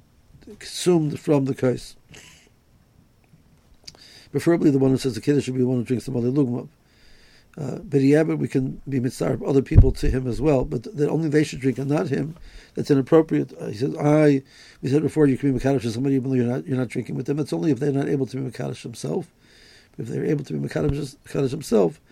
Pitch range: 130-145 Hz